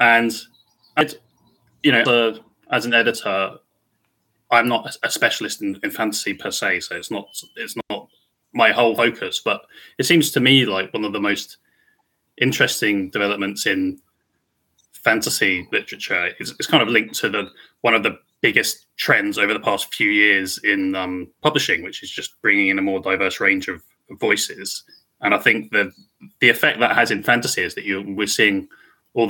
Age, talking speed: 20-39, 180 wpm